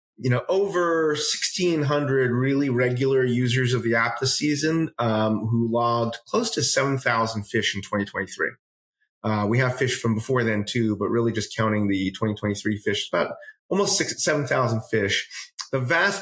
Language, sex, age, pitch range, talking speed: English, male, 30-49, 115-145 Hz, 155 wpm